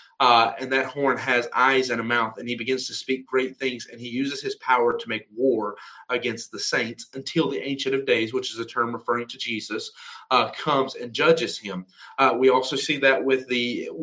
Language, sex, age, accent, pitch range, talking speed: English, male, 30-49, American, 125-180 Hz, 220 wpm